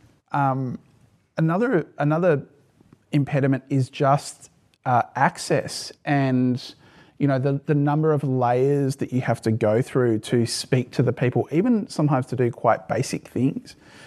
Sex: male